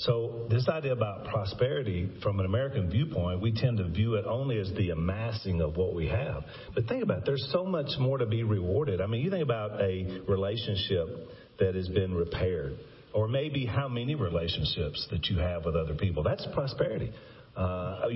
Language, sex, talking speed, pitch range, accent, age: English, male, 190 wpm, 100-125 Hz, American, 40-59